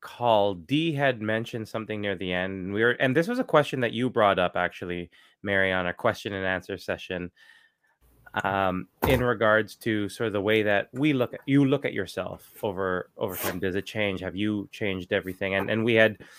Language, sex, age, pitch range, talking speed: English, male, 20-39, 95-115 Hz, 200 wpm